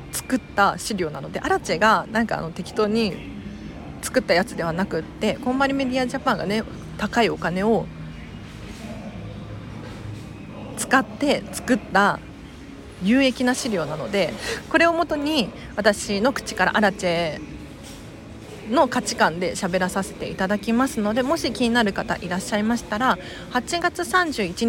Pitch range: 175-250 Hz